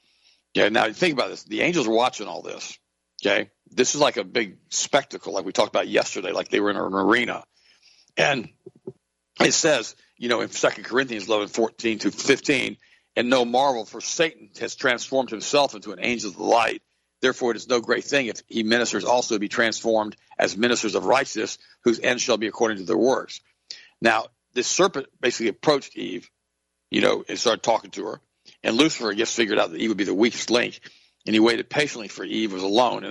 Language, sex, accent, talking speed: English, male, American, 205 wpm